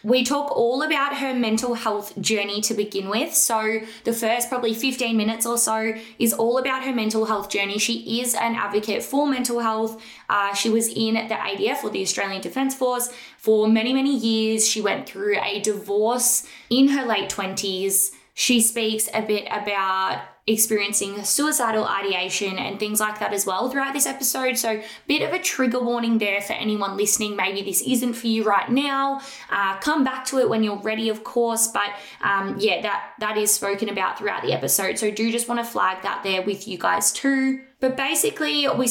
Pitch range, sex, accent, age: 210-255 Hz, female, Australian, 20-39